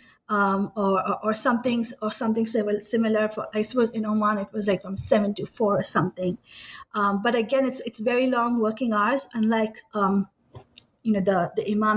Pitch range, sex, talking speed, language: 215-255 Hz, female, 185 wpm, English